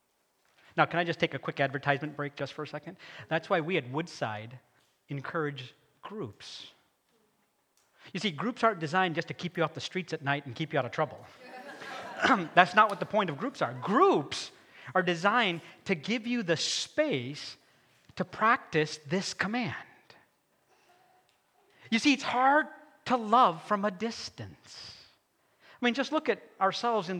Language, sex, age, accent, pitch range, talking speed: English, male, 40-59, American, 160-260 Hz, 170 wpm